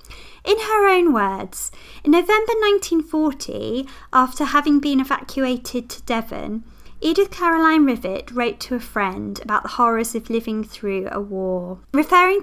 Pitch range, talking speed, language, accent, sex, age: 220-325 Hz, 140 wpm, English, British, female, 20-39